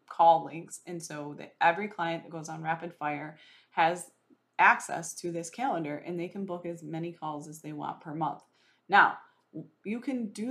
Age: 20-39